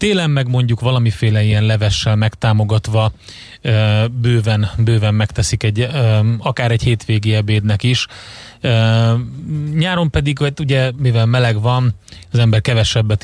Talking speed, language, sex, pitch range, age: 115 wpm, Hungarian, male, 110-125 Hz, 30-49